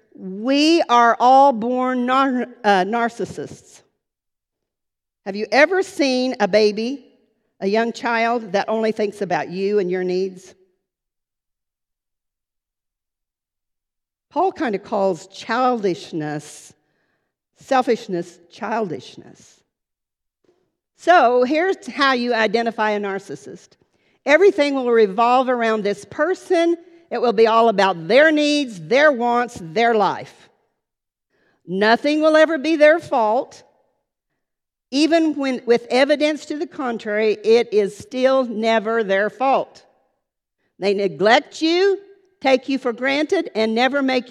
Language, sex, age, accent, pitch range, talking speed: English, female, 50-69, American, 205-280 Hz, 110 wpm